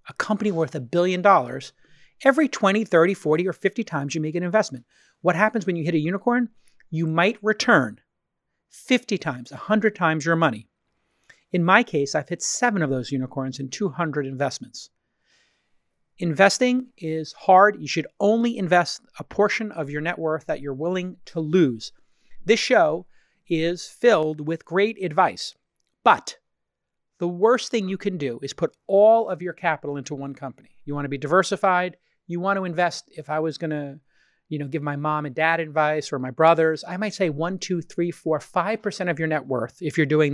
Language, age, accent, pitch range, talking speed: English, 40-59, American, 155-200 Hz, 190 wpm